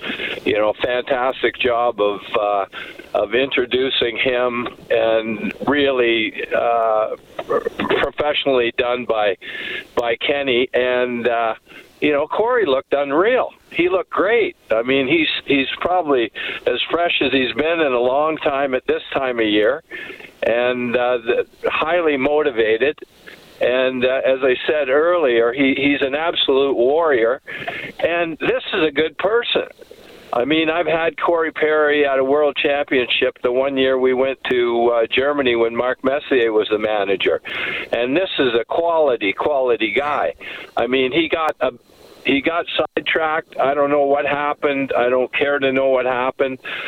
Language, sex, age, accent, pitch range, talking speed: English, male, 50-69, American, 125-160 Hz, 150 wpm